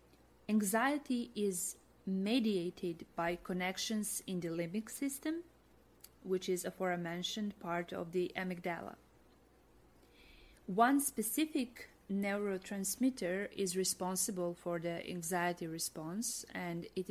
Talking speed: 95 wpm